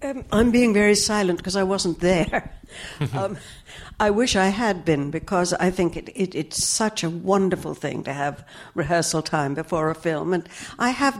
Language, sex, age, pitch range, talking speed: English, female, 60-79, 155-185 Hz, 190 wpm